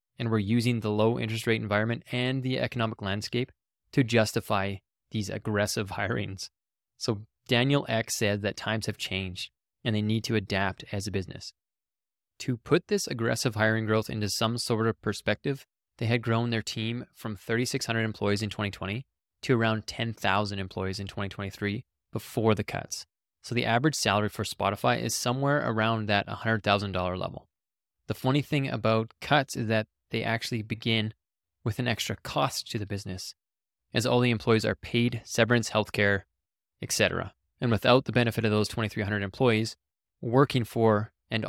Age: 20-39